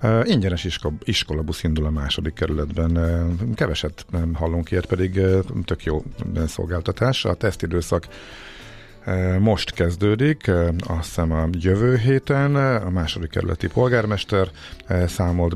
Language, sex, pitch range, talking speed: Hungarian, male, 85-100 Hz, 110 wpm